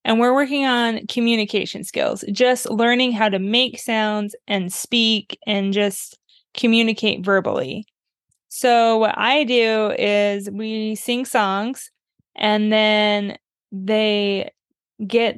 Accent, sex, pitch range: American, female, 210-245 Hz